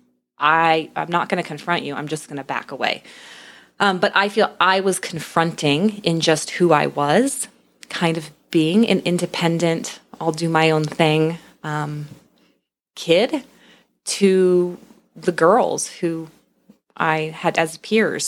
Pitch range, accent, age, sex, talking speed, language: 150-175 Hz, American, 20-39, female, 150 wpm, English